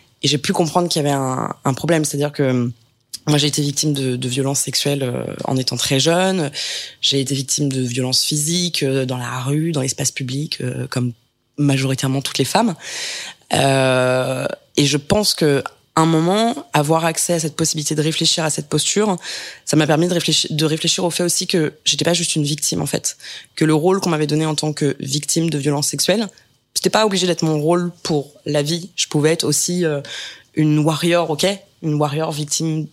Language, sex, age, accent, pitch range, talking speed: French, female, 20-39, French, 140-165 Hz, 200 wpm